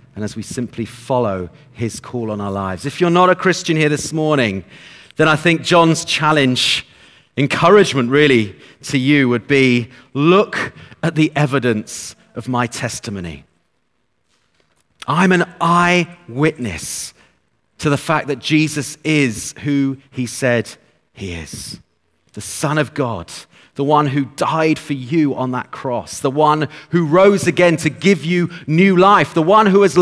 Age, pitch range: 30-49, 115-165 Hz